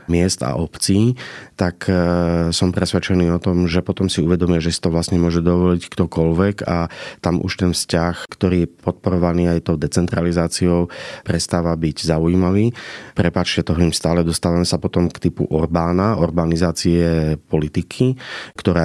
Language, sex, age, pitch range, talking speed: Slovak, male, 30-49, 80-90 Hz, 150 wpm